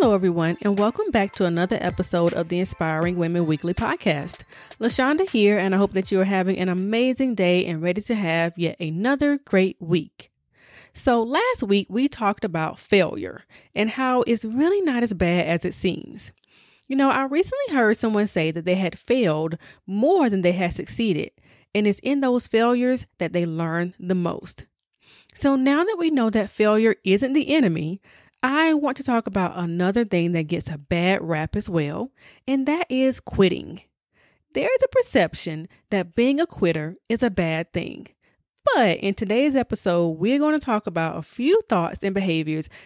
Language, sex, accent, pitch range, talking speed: English, female, American, 180-255 Hz, 185 wpm